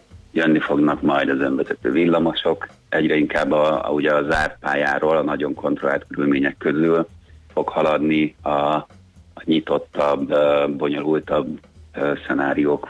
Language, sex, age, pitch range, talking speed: Hungarian, male, 30-49, 75-85 Hz, 110 wpm